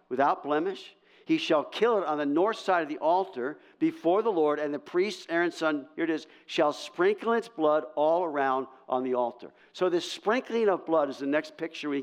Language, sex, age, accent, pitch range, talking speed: English, male, 50-69, American, 150-205 Hz, 215 wpm